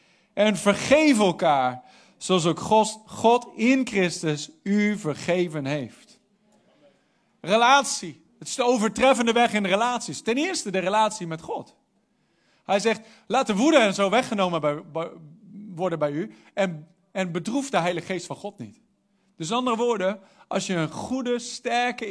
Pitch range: 170-225 Hz